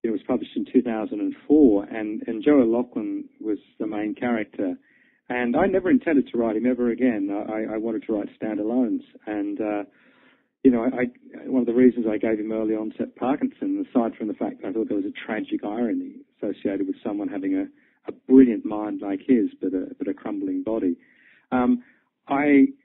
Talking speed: 190 wpm